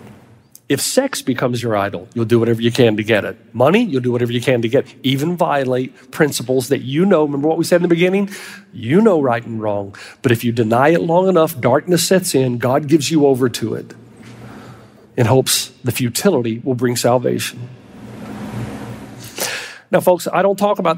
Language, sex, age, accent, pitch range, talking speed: English, male, 40-59, American, 130-175 Hz, 195 wpm